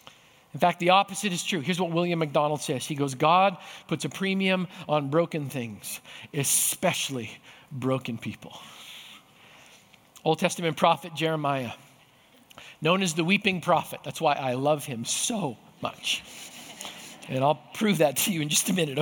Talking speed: 155 wpm